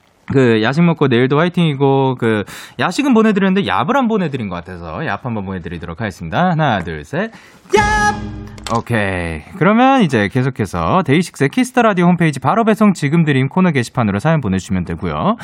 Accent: native